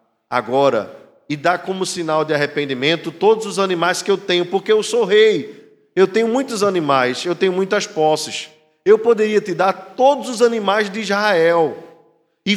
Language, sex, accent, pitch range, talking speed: Portuguese, male, Brazilian, 145-210 Hz, 165 wpm